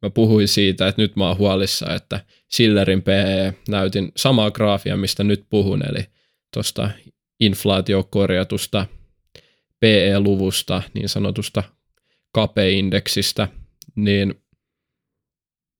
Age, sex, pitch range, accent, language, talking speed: 20-39, male, 100-115 Hz, native, Finnish, 95 wpm